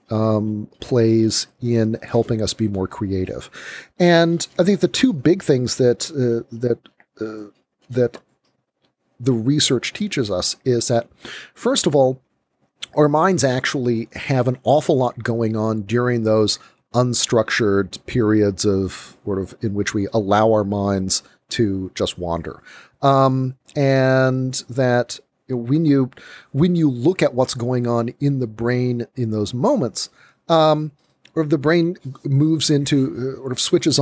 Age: 40-59